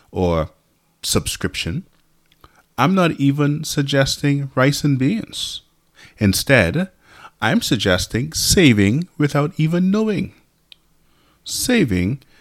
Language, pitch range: English, 95-145 Hz